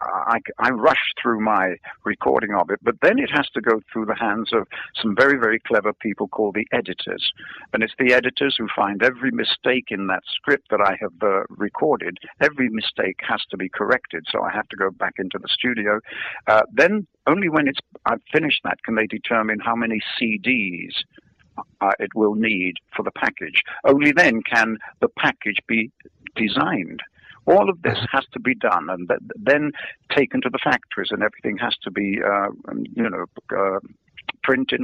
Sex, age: male, 60-79